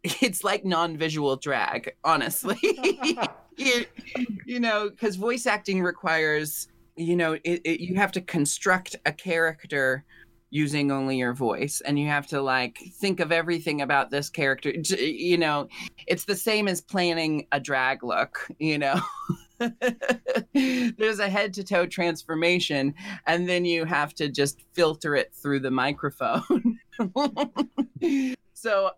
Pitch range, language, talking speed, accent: 135-185 Hz, English, 140 wpm, American